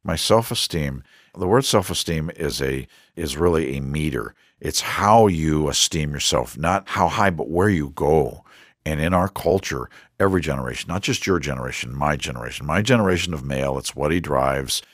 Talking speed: 175 wpm